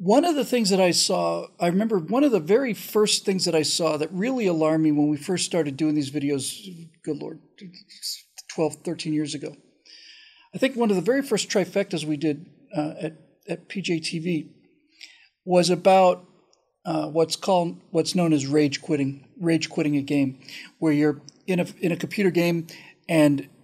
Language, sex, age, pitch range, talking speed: English, male, 50-69, 155-200 Hz, 185 wpm